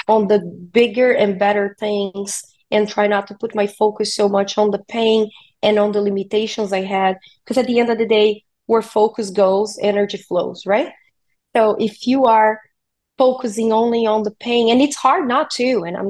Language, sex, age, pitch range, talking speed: English, female, 20-39, 200-230 Hz, 200 wpm